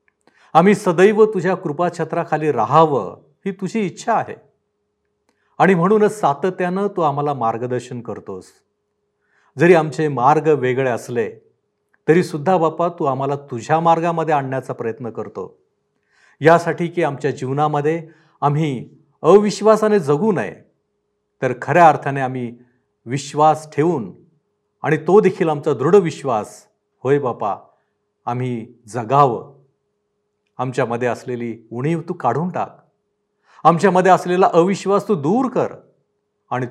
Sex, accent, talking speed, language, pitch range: male, native, 110 wpm, Marathi, 125-180 Hz